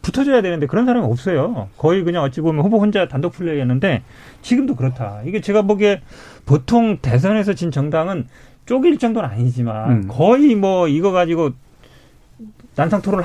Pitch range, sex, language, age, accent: 125-175 Hz, male, Korean, 40-59, native